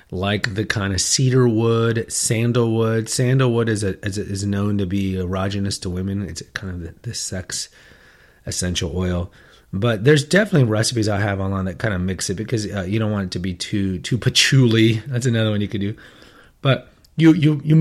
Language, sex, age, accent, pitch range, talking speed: English, male, 30-49, American, 100-135 Hz, 200 wpm